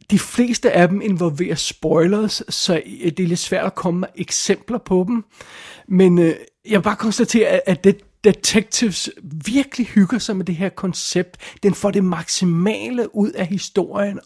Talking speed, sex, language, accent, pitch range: 170 wpm, male, Danish, native, 155-200 Hz